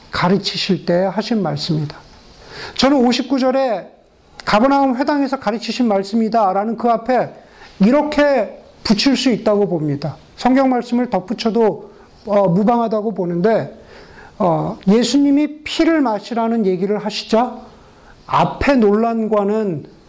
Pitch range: 190-255 Hz